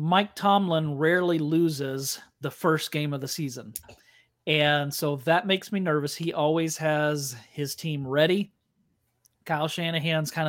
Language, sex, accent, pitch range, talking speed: English, male, American, 145-185 Hz, 145 wpm